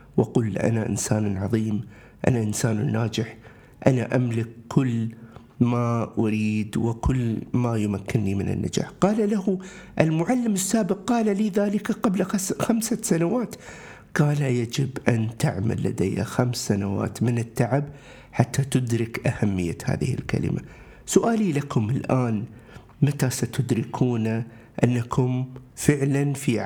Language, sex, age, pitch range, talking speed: Arabic, male, 50-69, 120-145 Hz, 110 wpm